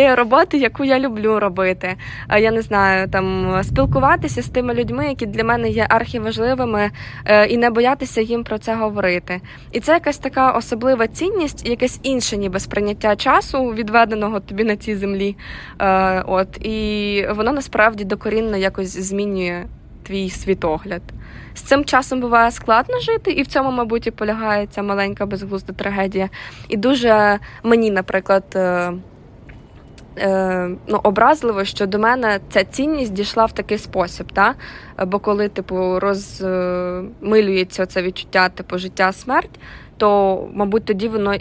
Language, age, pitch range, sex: Ukrainian, 20-39, 190-235 Hz, female